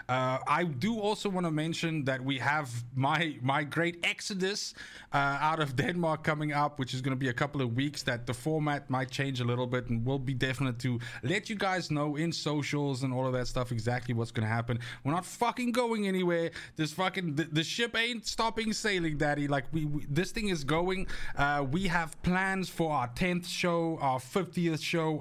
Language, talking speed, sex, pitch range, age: English, 210 wpm, male, 130-170 Hz, 20-39